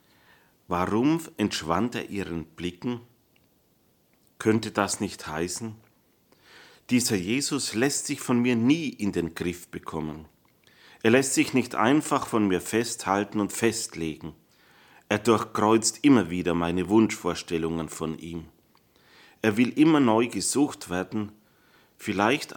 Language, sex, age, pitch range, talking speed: German, male, 40-59, 85-115 Hz, 120 wpm